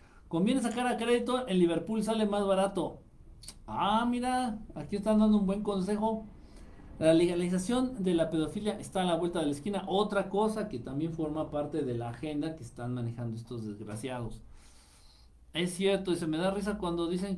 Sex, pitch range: male, 115-185 Hz